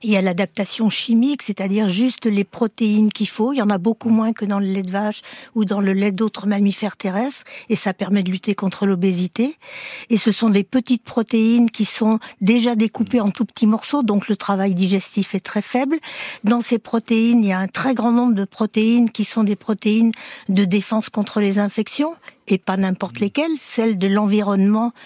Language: French